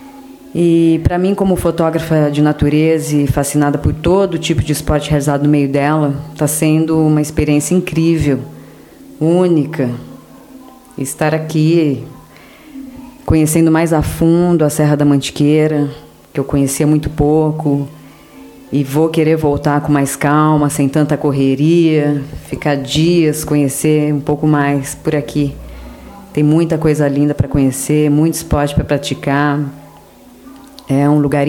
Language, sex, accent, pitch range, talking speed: Portuguese, female, Brazilian, 145-175 Hz, 135 wpm